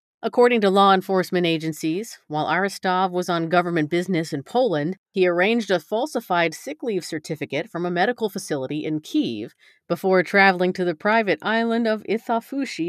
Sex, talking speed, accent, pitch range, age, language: female, 160 wpm, American, 165-200 Hz, 40-59, English